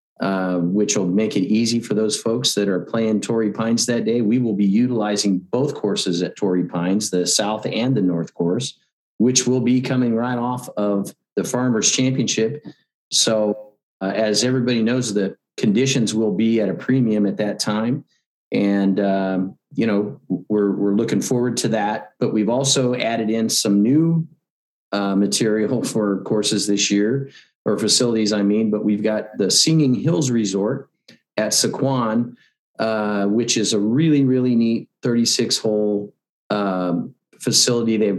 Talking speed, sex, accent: 160 wpm, male, American